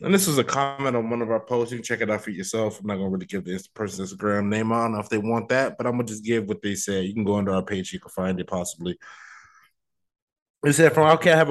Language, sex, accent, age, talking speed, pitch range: English, male, American, 20-39, 295 wpm, 100-115 Hz